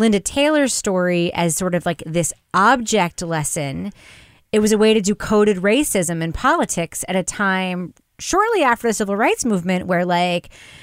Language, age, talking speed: English, 30-49, 170 wpm